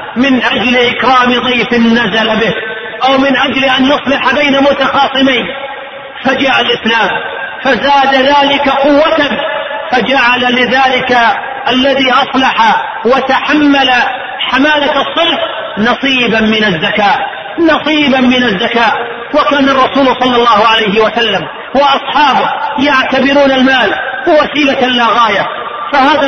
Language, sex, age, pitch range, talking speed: Arabic, male, 40-59, 240-280 Hz, 100 wpm